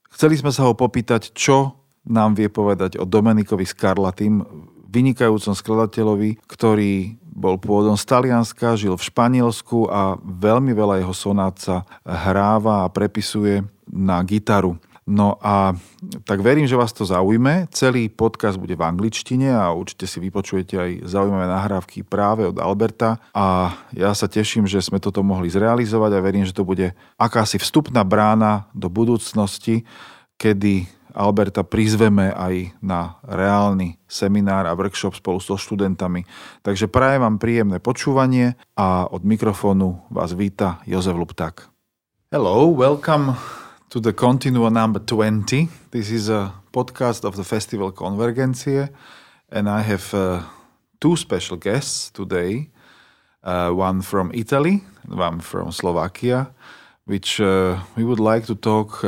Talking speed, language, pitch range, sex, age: 140 wpm, Slovak, 95-115 Hz, male, 40-59